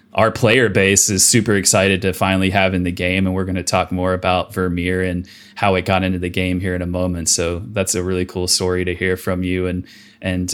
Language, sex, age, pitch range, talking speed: English, male, 20-39, 90-105 Hz, 245 wpm